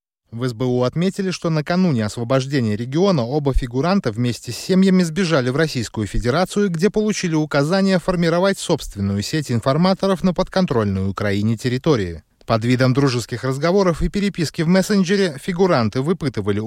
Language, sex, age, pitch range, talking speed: Russian, male, 20-39, 115-190 Hz, 135 wpm